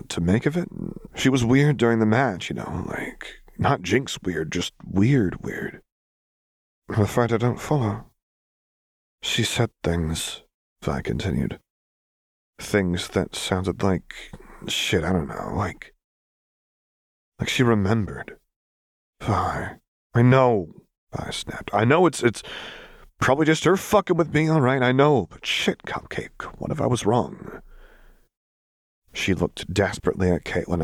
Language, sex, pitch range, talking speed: English, male, 90-130 Hz, 145 wpm